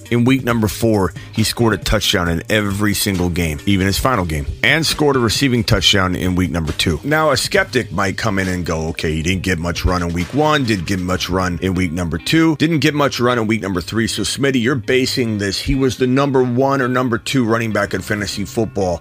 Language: English